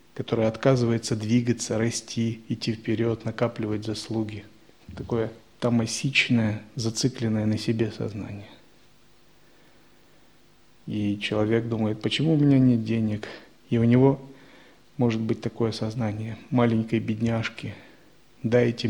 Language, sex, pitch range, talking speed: Russian, male, 110-135 Hz, 100 wpm